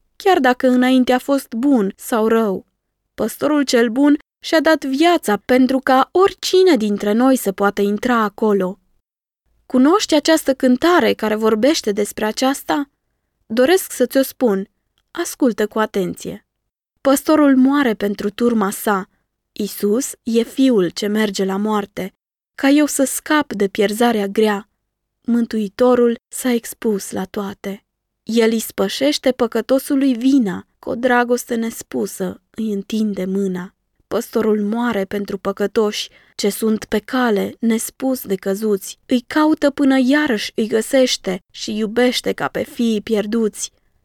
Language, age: Romanian, 20-39